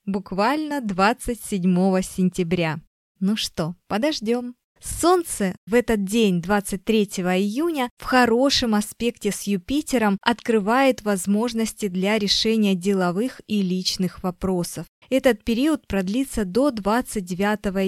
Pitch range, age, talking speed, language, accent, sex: 190-240 Hz, 20-39, 100 wpm, Russian, native, female